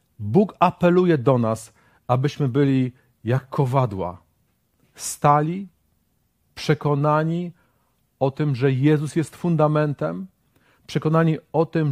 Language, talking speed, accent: Polish, 95 wpm, native